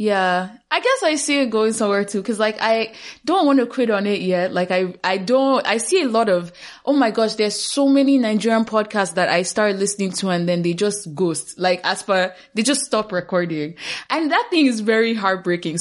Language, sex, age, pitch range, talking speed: English, female, 10-29, 170-225 Hz, 225 wpm